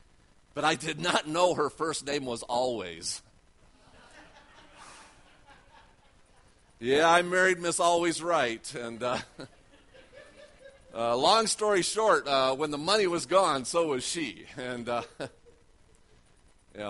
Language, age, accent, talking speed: English, 40-59, American, 120 wpm